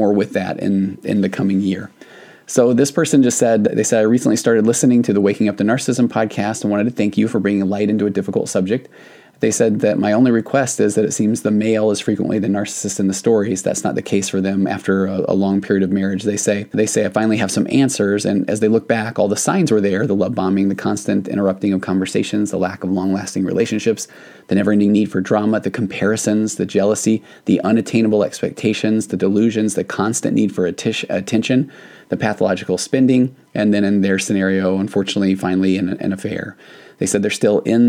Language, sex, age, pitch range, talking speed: English, male, 20-39, 95-110 Hz, 225 wpm